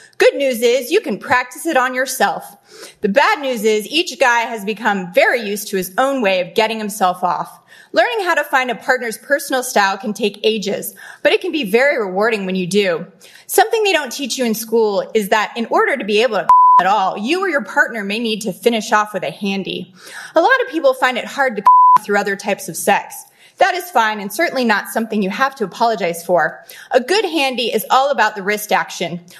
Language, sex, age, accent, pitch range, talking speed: English, female, 30-49, American, 205-280 Hz, 230 wpm